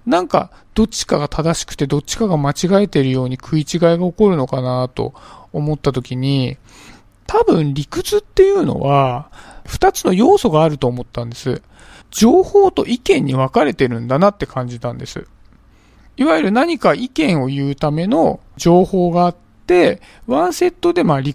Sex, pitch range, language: male, 130-215 Hz, Japanese